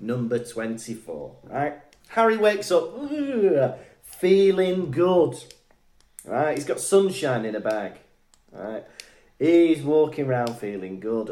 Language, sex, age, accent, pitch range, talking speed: English, male, 30-49, British, 120-190 Hz, 120 wpm